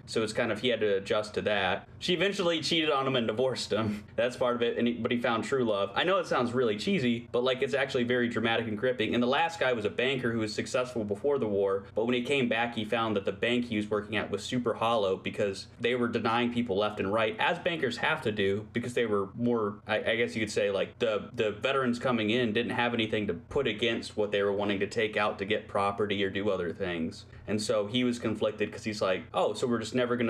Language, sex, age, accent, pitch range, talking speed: English, male, 20-39, American, 105-125 Hz, 265 wpm